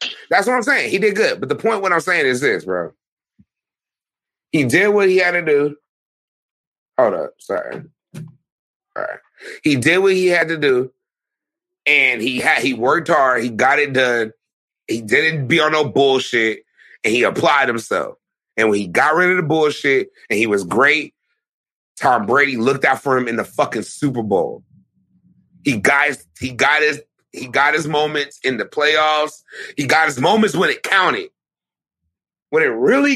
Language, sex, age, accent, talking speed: English, male, 30-49, American, 185 wpm